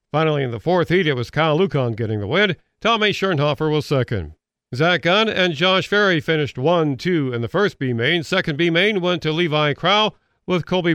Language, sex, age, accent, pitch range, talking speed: English, male, 50-69, American, 140-180 Hz, 190 wpm